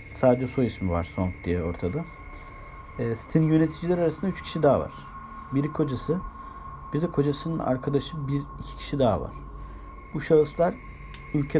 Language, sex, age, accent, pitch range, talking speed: Turkish, male, 50-69, native, 95-145 Hz, 145 wpm